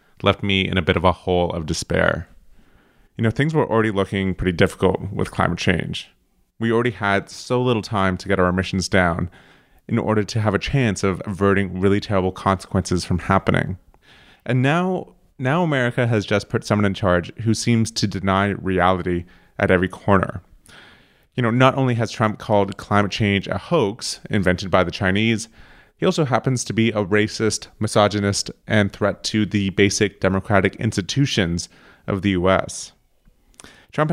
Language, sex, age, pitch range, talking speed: English, male, 30-49, 95-115 Hz, 170 wpm